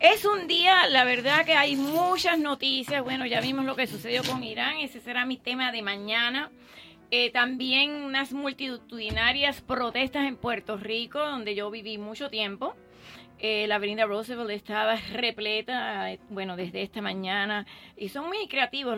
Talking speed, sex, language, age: 160 wpm, female, English, 30-49